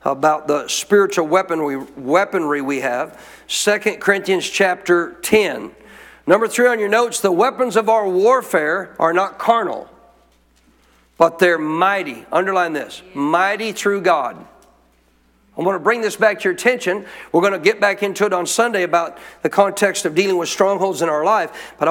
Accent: American